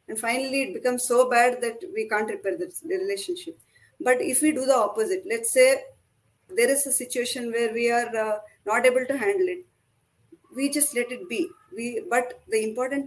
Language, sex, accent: Hindi, female, native